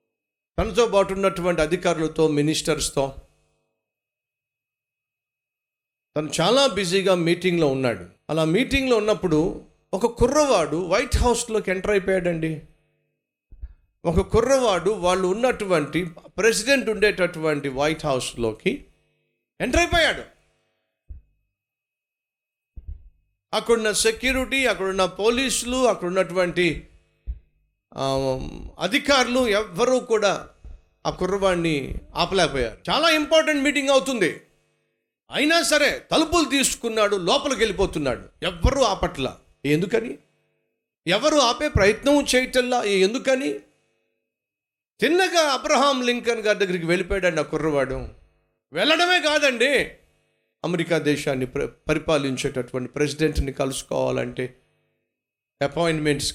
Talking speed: 80 wpm